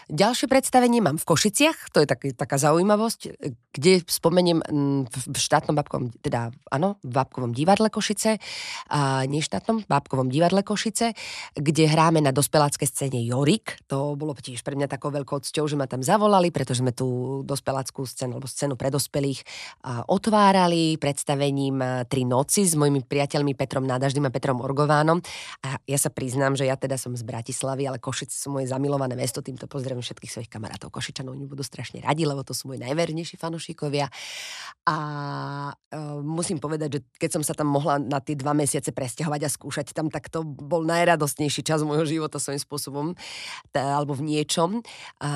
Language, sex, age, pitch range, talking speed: Slovak, female, 20-39, 135-160 Hz, 170 wpm